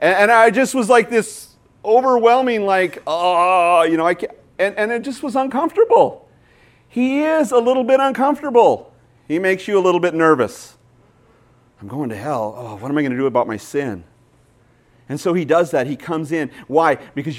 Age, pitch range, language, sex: 40-59, 125-170 Hz, English, male